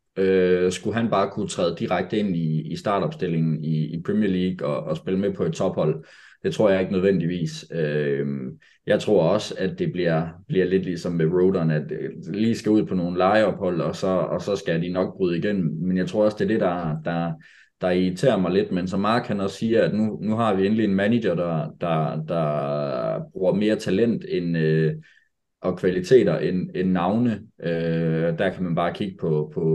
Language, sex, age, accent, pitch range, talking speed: Danish, male, 20-39, native, 80-95 Hz, 200 wpm